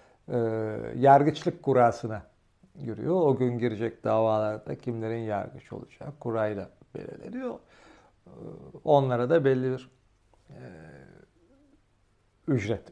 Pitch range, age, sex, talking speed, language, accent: 120-190 Hz, 60-79, male, 80 wpm, Turkish, native